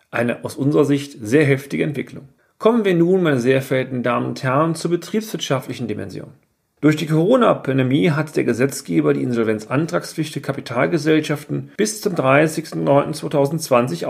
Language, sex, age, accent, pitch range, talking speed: German, male, 40-59, German, 130-160 Hz, 130 wpm